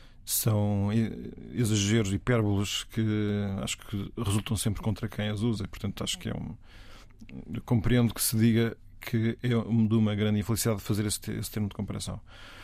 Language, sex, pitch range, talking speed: Portuguese, male, 105-120 Hz, 165 wpm